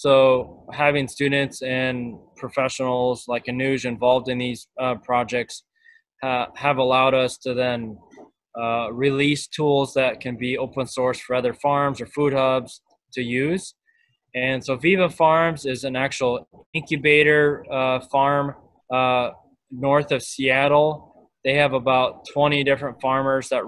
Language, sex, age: English, male, 20-39